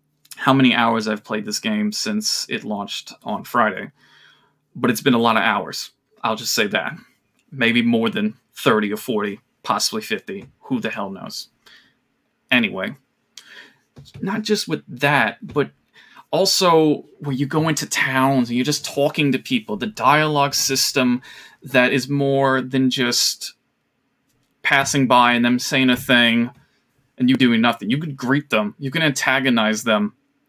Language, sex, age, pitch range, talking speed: English, male, 20-39, 125-150 Hz, 155 wpm